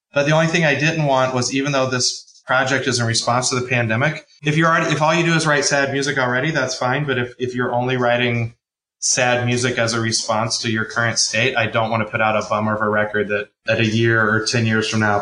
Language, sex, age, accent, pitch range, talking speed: English, male, 20-39, American, 110-140 Hz, 265 wpm